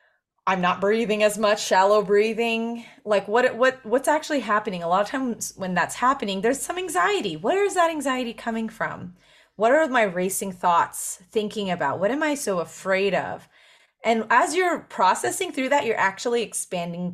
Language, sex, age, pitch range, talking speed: English, female, 30-49, 180-230 Hz, 180 wpm